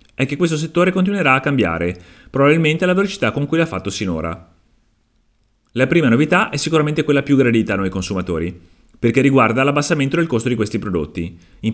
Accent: native